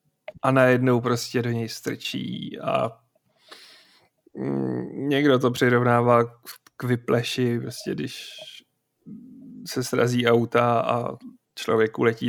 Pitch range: 120-140 Hz